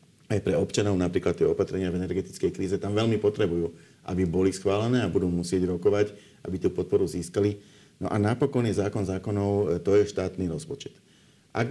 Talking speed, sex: 175 wpm, male